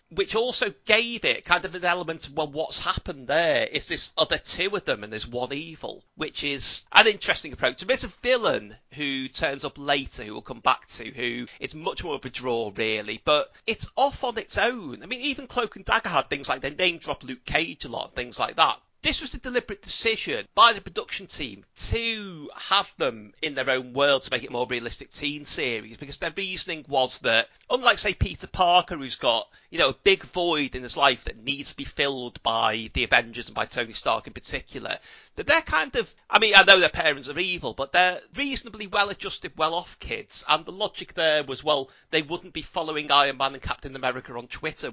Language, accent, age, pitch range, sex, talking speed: English, British, 30-49, 135-195 Hz, male, 220 wpm